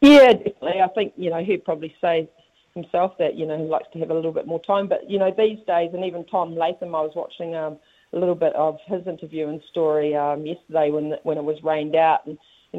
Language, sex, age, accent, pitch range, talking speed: English, female, 40-59, Australian, 160-190 Hz, 250 wpm